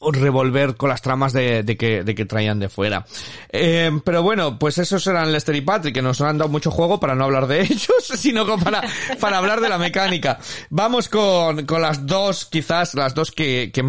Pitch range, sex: 135-180 Hz, male